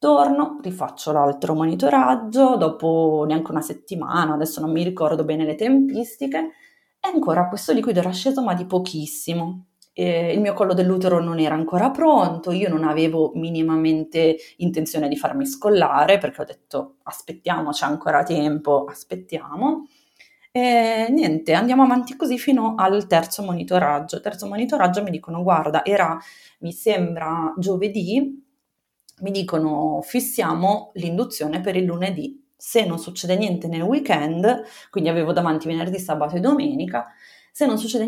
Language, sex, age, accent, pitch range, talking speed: Italian, female, 30-49, native, 160-230 Hz, 140 wpm